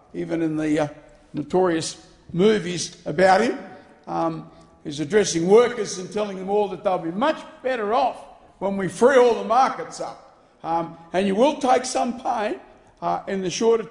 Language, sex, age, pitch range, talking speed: English, male, 60-79, 175-265 Hz, 175 wpm